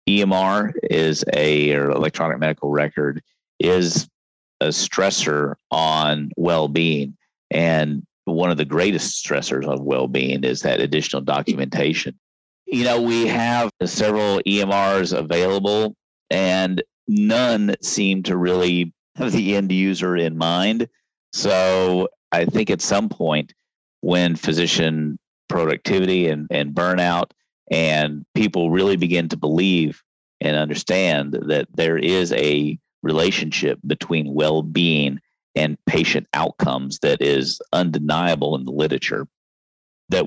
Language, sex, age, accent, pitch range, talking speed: English, male, 50-69, American, 75-90 Hz, 115 wpm